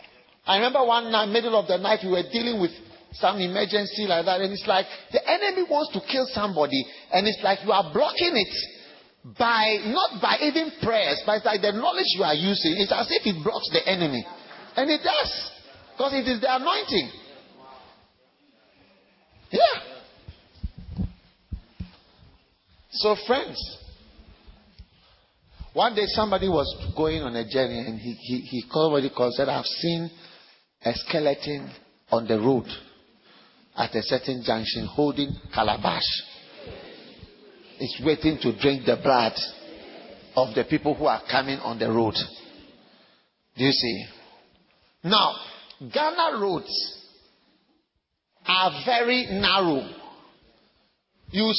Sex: male